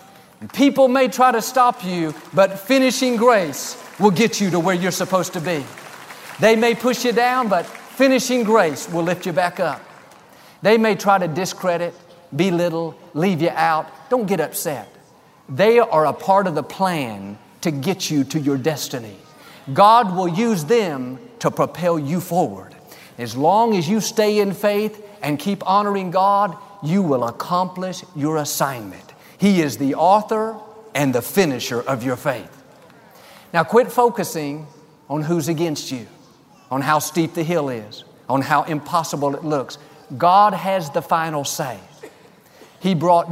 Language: English